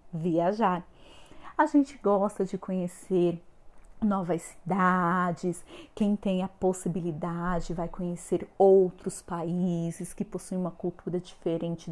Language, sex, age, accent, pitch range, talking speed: Portuguese, female, 40-59, Brazilian, 170-250 Hz, 105 wpm